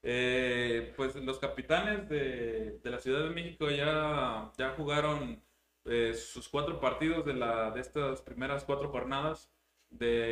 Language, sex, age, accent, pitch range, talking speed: Spanish, male, 20-39, Mexican, 115-140 Hz, 145 wpm